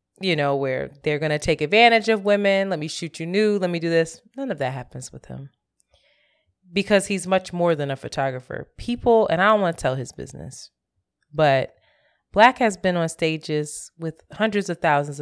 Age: 20-39